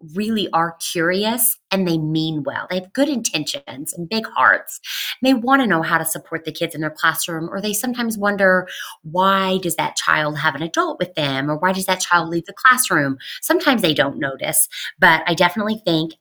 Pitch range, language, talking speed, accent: 145-180 Hz, English, 205 wpm, American